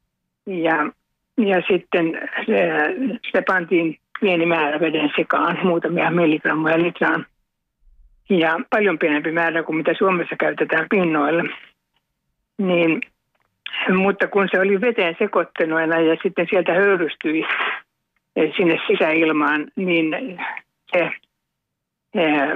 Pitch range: 160-185 Hz